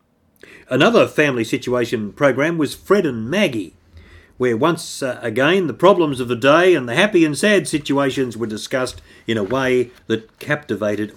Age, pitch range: 50-69, 115-165 Hz